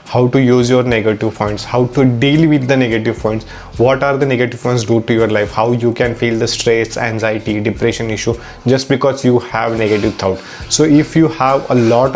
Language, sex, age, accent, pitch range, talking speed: English, male, 20-39, Indian, 115-130 Hz, 210 wpm